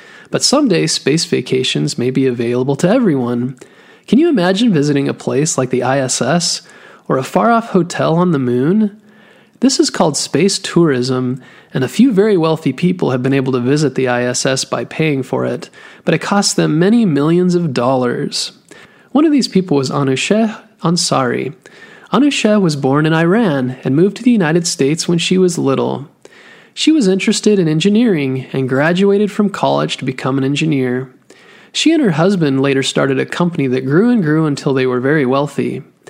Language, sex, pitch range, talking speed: English, male, 135-195 Hz, 180 wpm